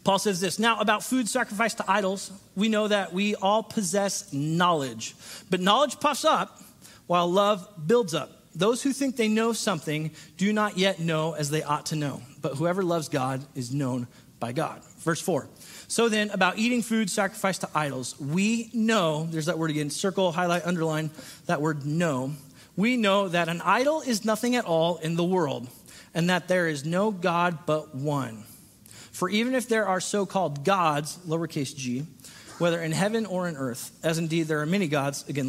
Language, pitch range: English, 145-195 Hz